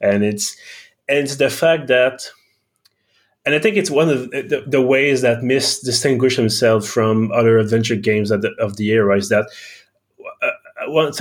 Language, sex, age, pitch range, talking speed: English, male, 20-39, 110-130 Hz, 175 wpm